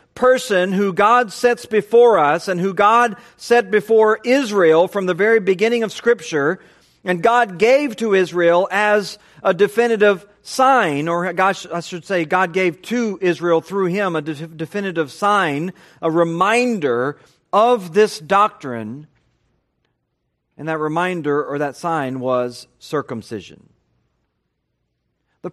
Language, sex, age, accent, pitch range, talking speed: English, male, 40-59, American, 170-235 Hz, 130 wpm